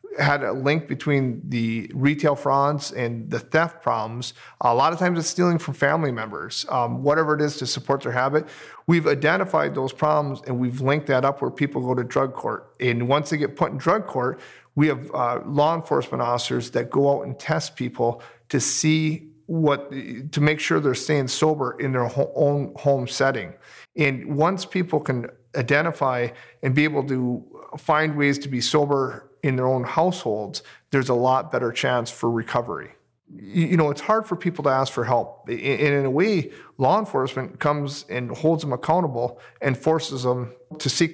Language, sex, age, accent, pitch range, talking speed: English, male, 40-59, American, 125-150 Hz, 185 wpm